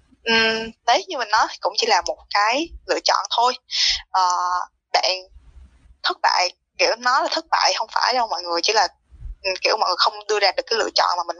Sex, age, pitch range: female, 10-29, 175-290 Hz